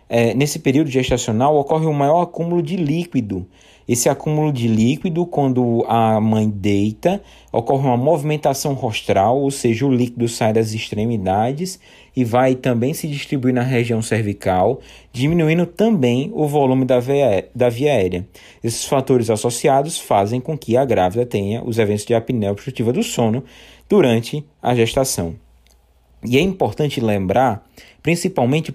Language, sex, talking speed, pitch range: Portuguese, male, 145 wpm, 115-150 Hz